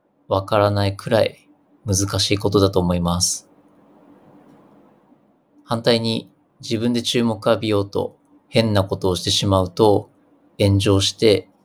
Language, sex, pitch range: Japanese, male, 100-115 Hz